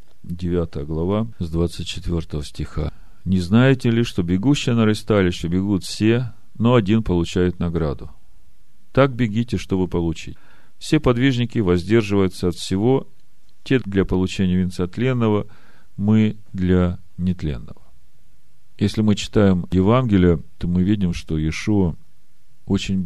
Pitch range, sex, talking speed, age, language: 85-110 Hz, male, 115 wpm, 40-59, Russian